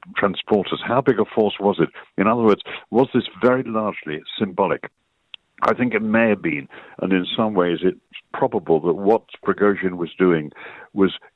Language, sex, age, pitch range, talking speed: English, male, 60-79, 85-105 Hz, 175 wpm